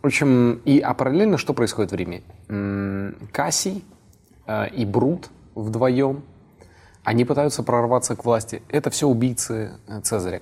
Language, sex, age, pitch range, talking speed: Russian, male, 20-39, 100-130 Hz, 125 wpm